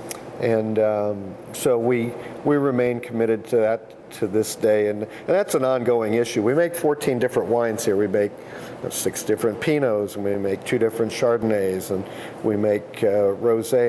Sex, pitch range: male, 105-125 Hz